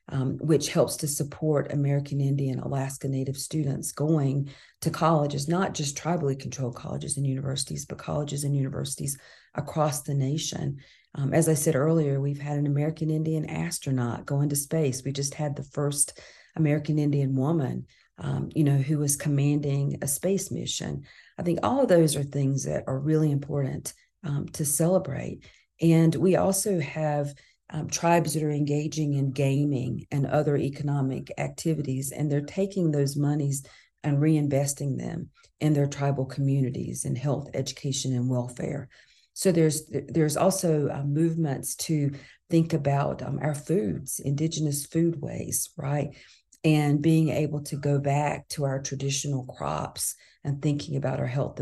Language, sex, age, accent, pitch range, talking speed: English, female, 40-59, American, 140-155 Hz, 155 wpm